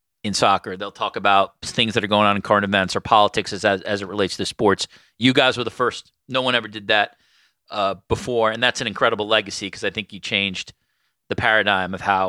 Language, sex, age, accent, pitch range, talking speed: English, male, 30-49, American, 110-140 Hz, 235 wpm